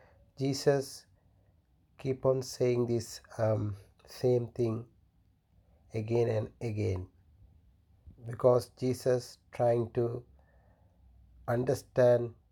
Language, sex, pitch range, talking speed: English, male, 95-120 Hz, 75 wpm